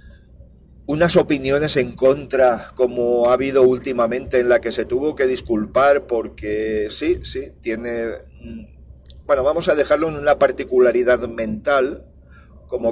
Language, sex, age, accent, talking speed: Spanish, male, 40-59, Spanish, 130 wpm